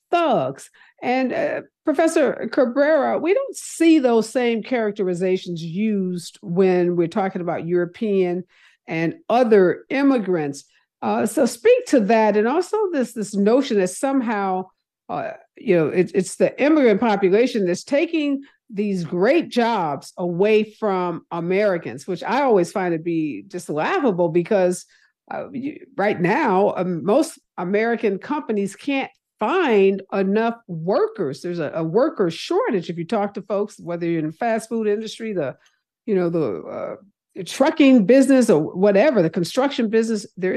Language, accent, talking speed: English, American, 150 wpm